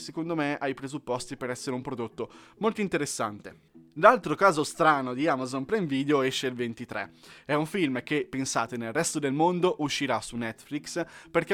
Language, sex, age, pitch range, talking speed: Italian, male, 20-39, 120-160 Hz, 175 wpm